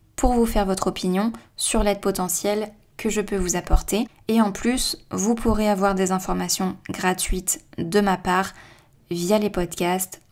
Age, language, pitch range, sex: 20-39, French, 180-205 Hz, female